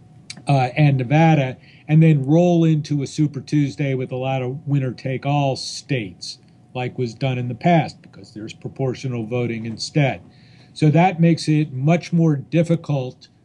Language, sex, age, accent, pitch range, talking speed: English, male, 40-59, American, 135-155 Hz, 150 wpm